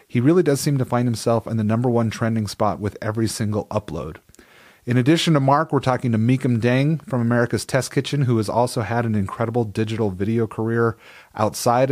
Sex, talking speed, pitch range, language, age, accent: male, 200 wpm, 100-125 Hz, English, 30-49, American